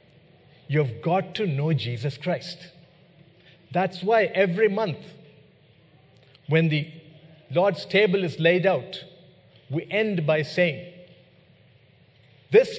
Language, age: English, 50-69